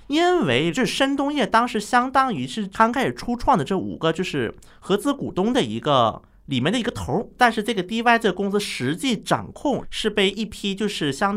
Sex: male